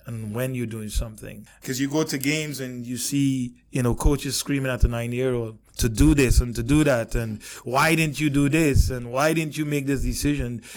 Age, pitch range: 20-39, 120-145 Hz